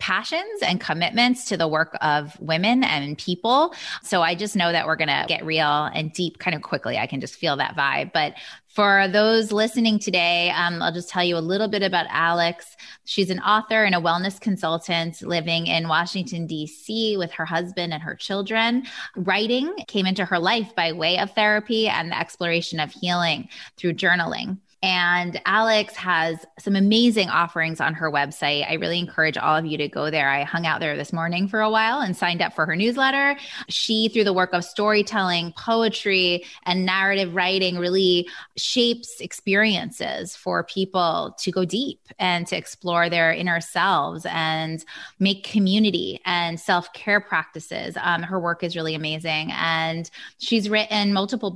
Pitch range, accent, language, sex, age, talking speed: 165-210 Hz, American, English, female, 20-39, 175 wpm